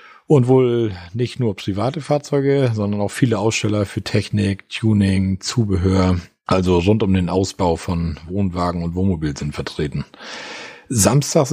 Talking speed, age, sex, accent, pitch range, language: 135 wpm, 40-59, male, German, 95-120 Hz, German